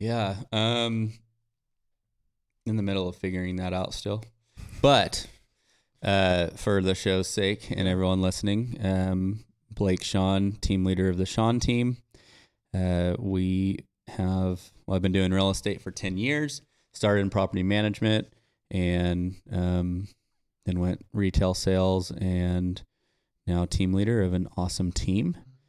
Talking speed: 135 wpm